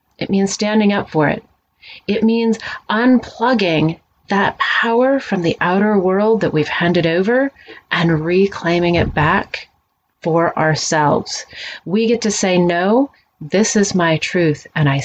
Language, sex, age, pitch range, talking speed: English, female, 30-49, 160-210 Hz, 145 wpm